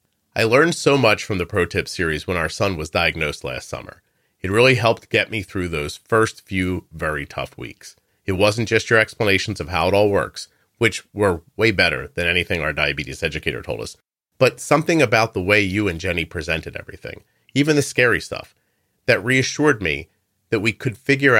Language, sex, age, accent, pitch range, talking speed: English, male, 40-59, American, 100-130 Hz, 195 wpm